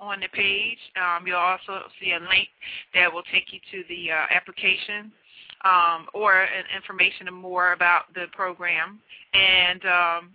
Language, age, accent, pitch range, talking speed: English, 40-59, American, 180-205 Hz, 160 wpm